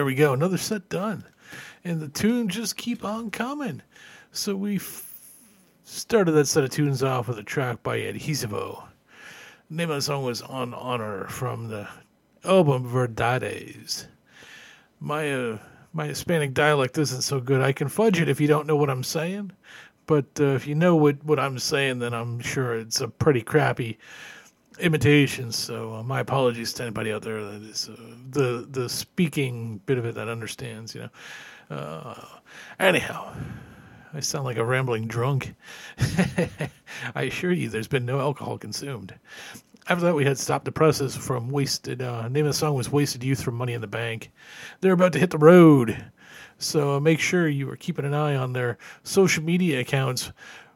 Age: 40-59